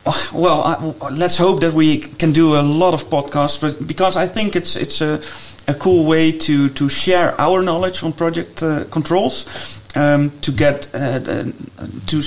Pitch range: 145-165 Hz